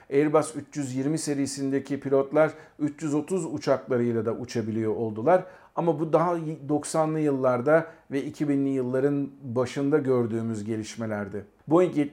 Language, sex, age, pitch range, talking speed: Turkish, male, 50-69, 130-160 Hz, 105 wpm